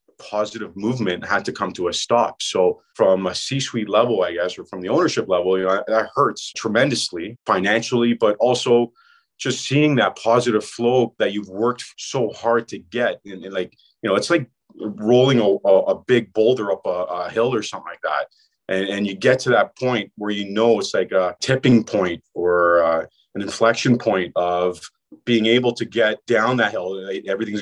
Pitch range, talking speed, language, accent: 105-135 Hz, 185 wpm, English, American